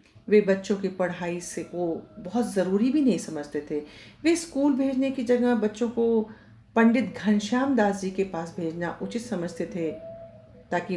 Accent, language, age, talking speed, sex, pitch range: native, Hindi, 50-69, 165 wpm, female, 175-245 Hz